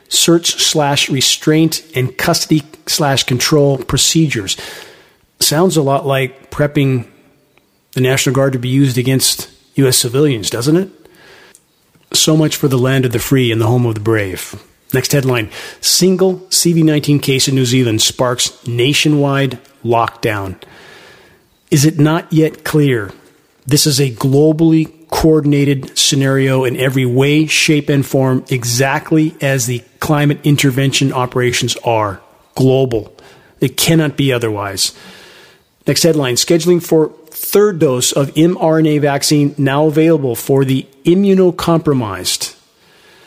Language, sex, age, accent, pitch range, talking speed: English, male, 40-59, American, 125-155 Hz, 120 wpm